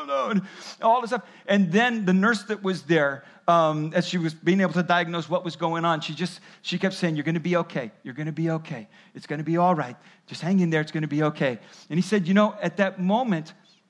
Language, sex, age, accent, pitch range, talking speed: English, male, 40-59, American, 180-220 Hz, 260 wpm